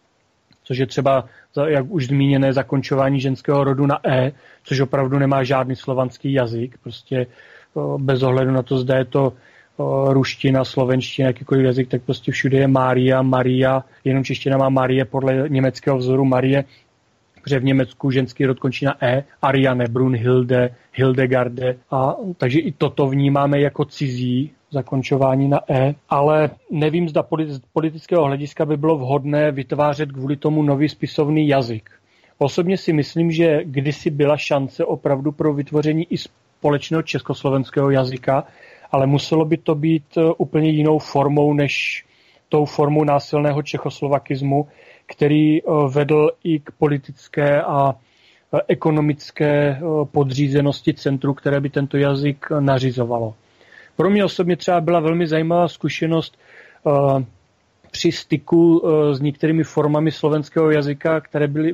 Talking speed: 130 wpm